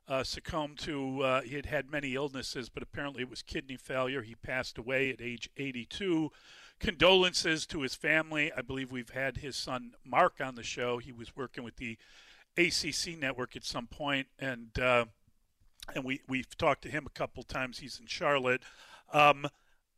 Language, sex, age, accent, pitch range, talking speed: English, male, 40-59, American, 130-160 Hz, 180 wpm